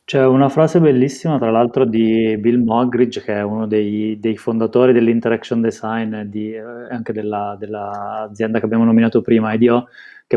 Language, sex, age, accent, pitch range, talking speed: Italian, male, 20-39, native, 110-125 Hz, 160 wpm